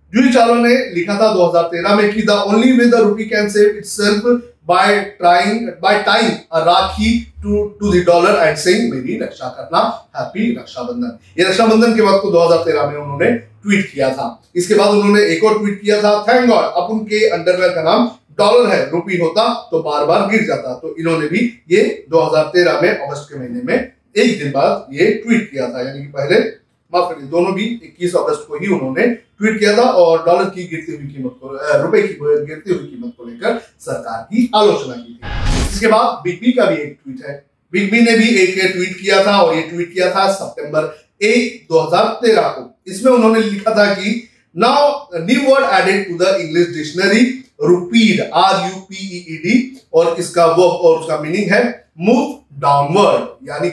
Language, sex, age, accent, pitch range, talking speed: Hindi, male, 40-59, native, 165-225 Hz, 120 wpm